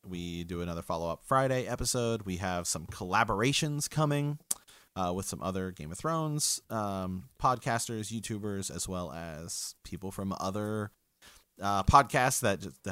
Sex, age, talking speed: male, 30-49, 140 wpm